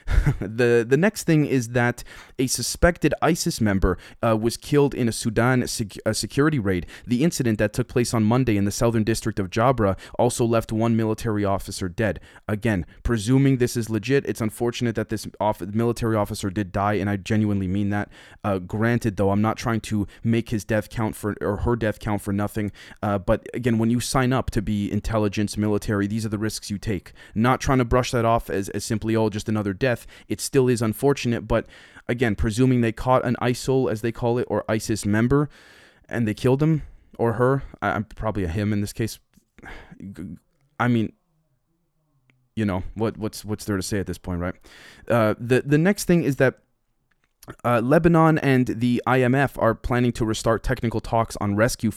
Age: 20-39